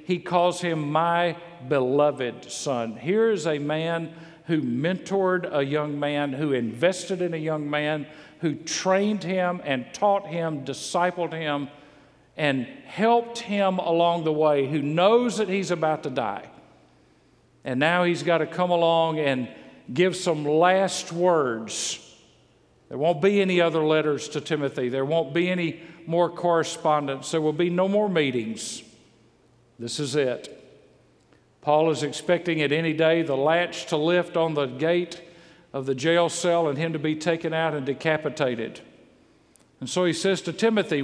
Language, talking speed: English, 160 wpm